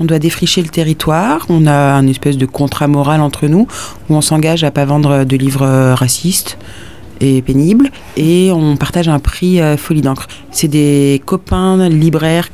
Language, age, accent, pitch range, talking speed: French, 30-49, French, 135-170 Hz, 175 wpm